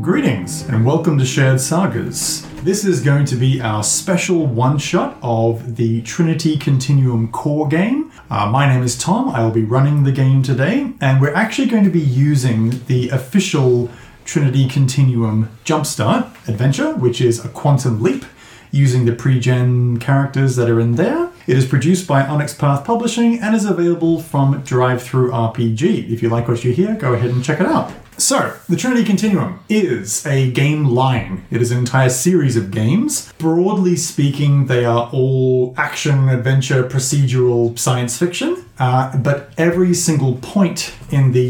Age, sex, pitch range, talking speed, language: 30-49, male, 120-155 Hz, 165 wpm, English